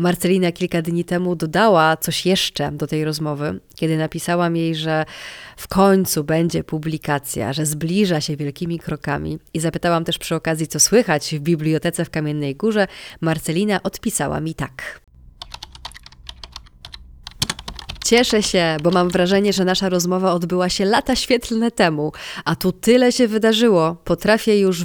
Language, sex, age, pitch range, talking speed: Polish, female, 20-39, 155-185 Hz, 140 wpm